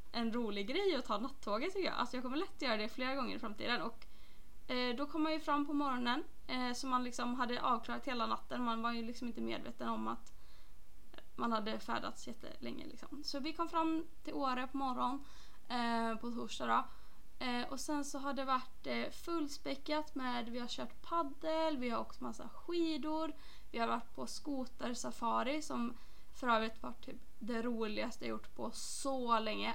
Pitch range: 235-305 Hz